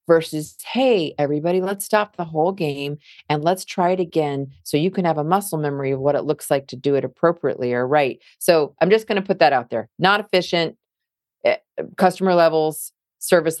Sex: female